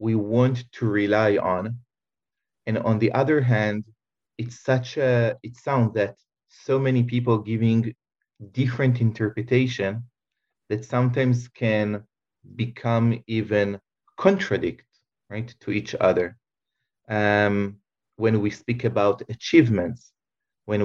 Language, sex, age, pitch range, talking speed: English, male, 30-49, 105-120 Hz, 110 wpm